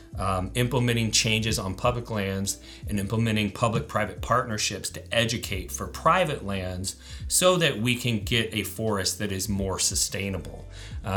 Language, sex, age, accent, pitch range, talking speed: English, male, 40-59, American, 100-115 Hz, 145 wpm